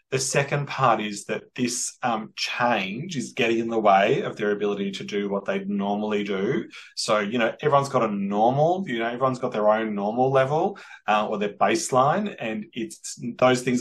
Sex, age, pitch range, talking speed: male, 30-49, 105-150 Hz, 195 wpm